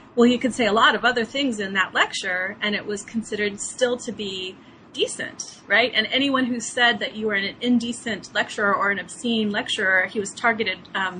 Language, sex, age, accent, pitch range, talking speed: English, female, 30-49, American, 200-240 Hz, 210 wpm